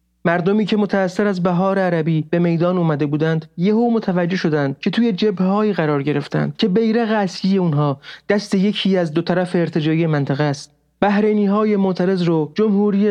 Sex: male